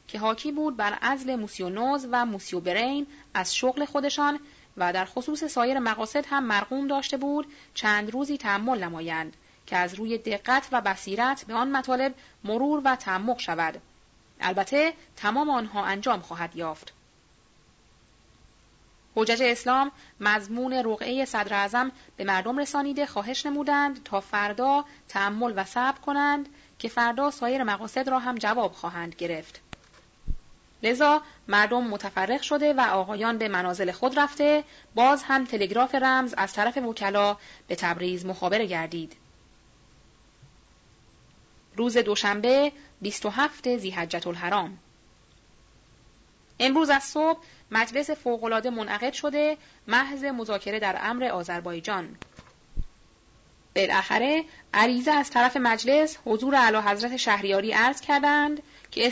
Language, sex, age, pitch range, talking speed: Persian, female, 30-49, 205-275 Hz, 120 wpm